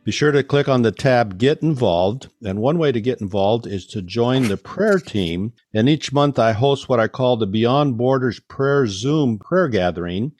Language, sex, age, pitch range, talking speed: English, male, 50-69, 100-130 Hz, 210 wpm